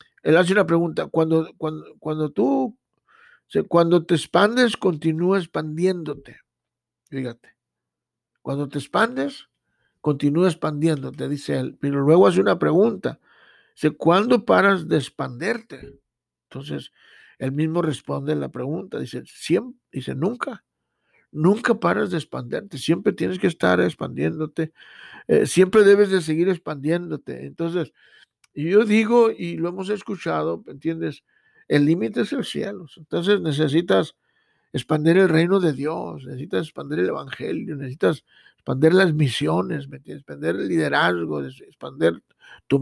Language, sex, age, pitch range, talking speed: Spanish, male, 60-79, 145-190 Hz, 130 wpm